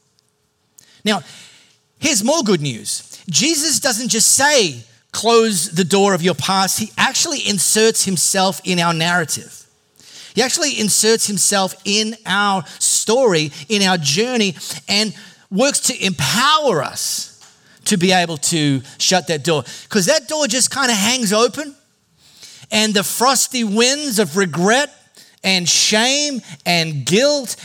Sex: male